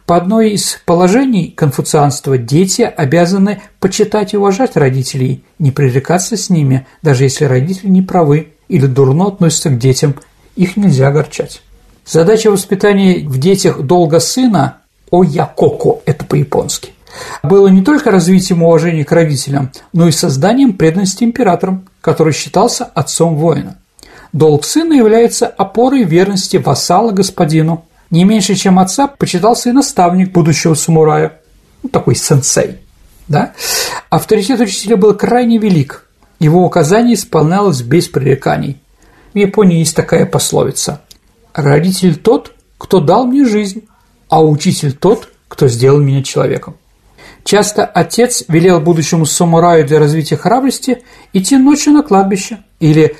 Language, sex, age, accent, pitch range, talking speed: Russian, male, 50-69, native, 155-205 Hz, 125 wpm